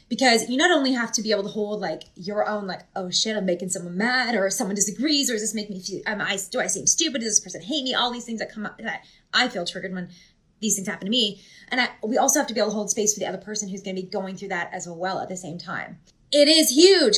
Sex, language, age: female, English, 20-39